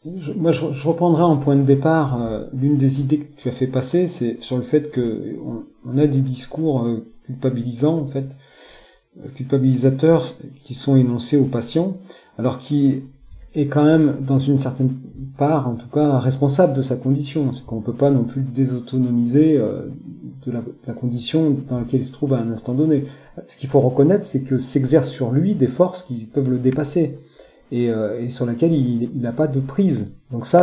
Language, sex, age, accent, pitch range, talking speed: French, male, 40-59, French, 125-150 Hz, 205 wpm